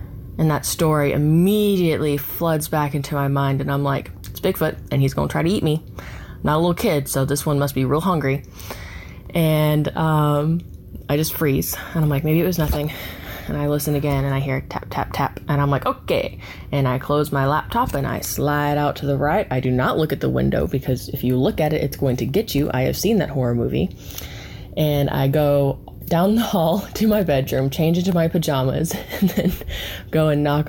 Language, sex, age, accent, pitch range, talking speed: English, female, 20-39, American, 130-165 Hz, 220 wpm